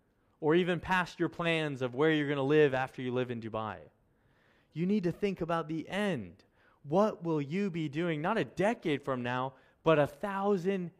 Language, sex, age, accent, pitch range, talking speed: English, male, 20-39, American, 110-170 Hz, 190 wpm